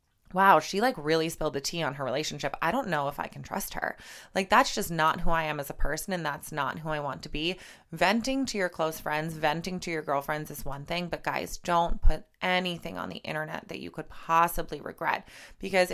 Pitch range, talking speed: 150-195 Hz, 235 wpm